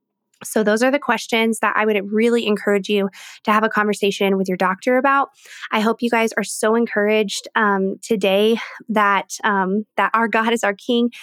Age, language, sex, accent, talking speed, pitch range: 20-39, English, female, American, 190 wpm, 205-235 Hz